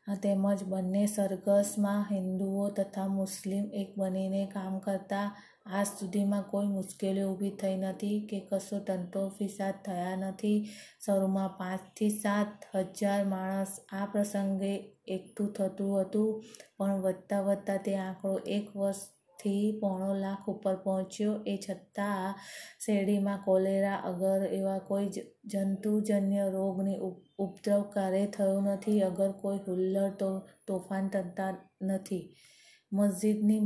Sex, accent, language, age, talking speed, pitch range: female, native, Gujarati, 20-39, 105 wpm, 190-200 Hz